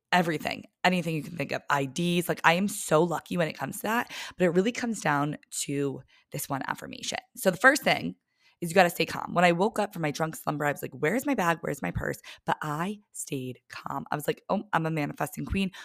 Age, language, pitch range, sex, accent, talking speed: 20-39, English, 150-190 Hz, female, American, 245 wpm